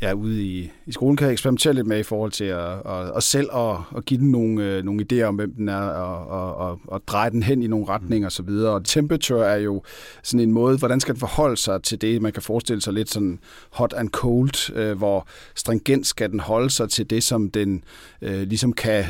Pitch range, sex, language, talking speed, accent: 100-120 Hz, male, Danish, 235 wpm, native